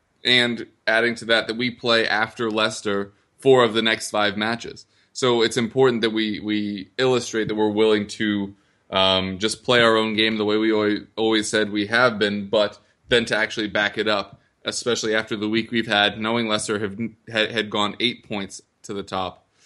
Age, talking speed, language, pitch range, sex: 20-39, 190 wpm, English, 100-115 Hz, male